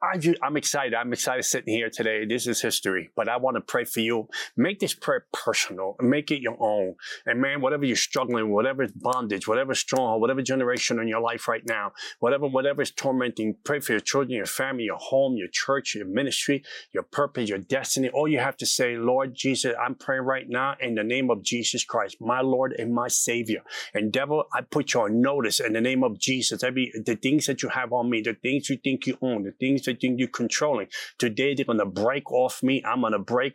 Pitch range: 120-140 Hz